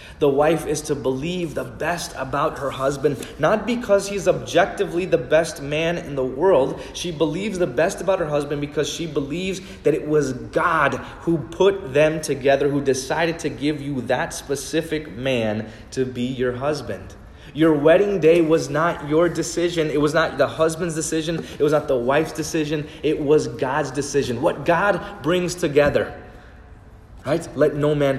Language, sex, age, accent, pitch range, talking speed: English, male, 20-39, American, 125-160 Hz, 170 wpm